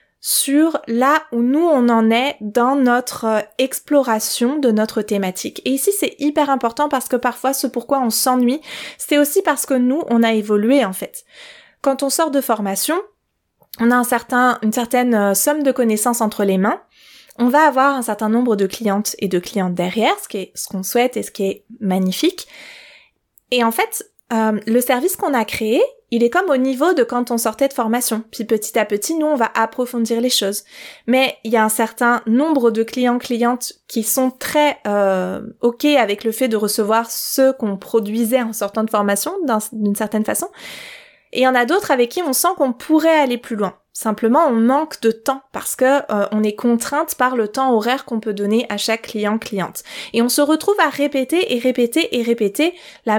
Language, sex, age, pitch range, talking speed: French, female, 20-39, 220-280 Hz, 210 wpm